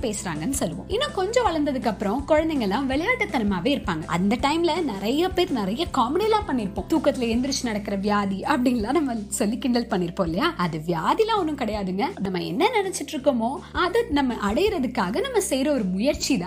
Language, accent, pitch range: Tamil, native, 220-335 Hz